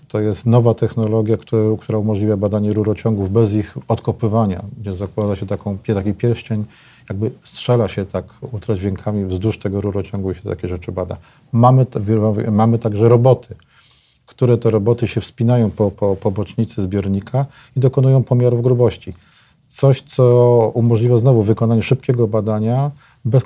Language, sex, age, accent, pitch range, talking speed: Polish, male, 40-59, native, 105-120 Hz, 145 wpm